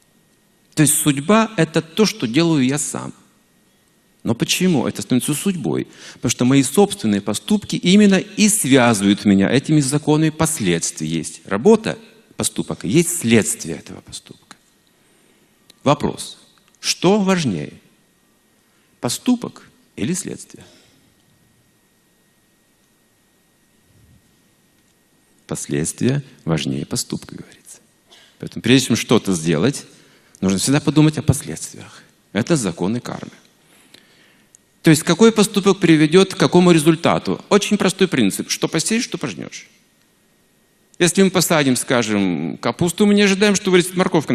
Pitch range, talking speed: 125-195 Hz, 110 wpm